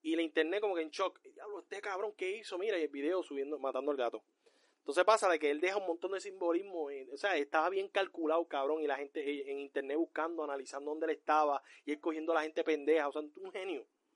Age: 30-49